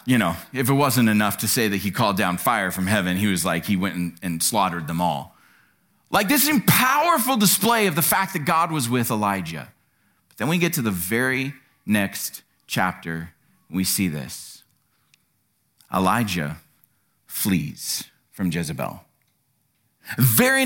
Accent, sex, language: American, male, English